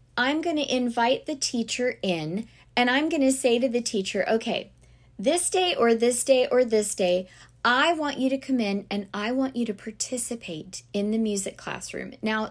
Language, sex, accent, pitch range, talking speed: English, female, American, 190-260 Hz, 195 wpm